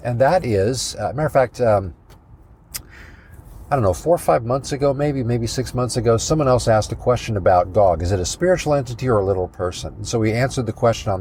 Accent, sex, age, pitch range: American, male, 50-69, 95-125 Hz